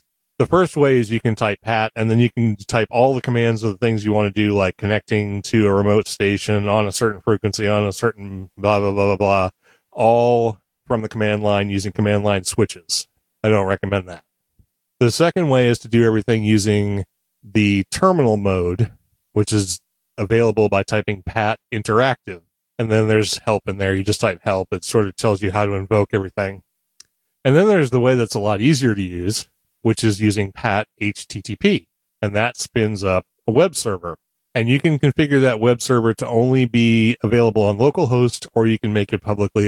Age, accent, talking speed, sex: 30-49, American, 200 wpm, male